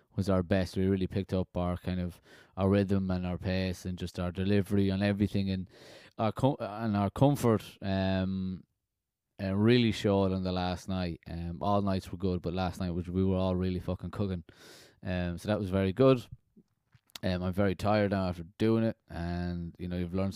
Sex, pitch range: male, 90-110 Hz